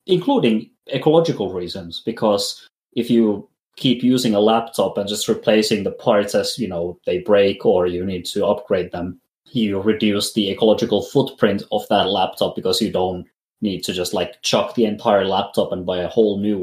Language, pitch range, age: English, 100-120 Hz, 20-39